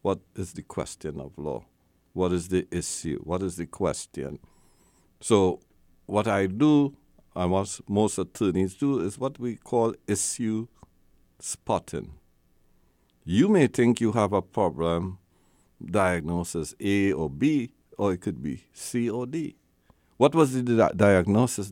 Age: 60-79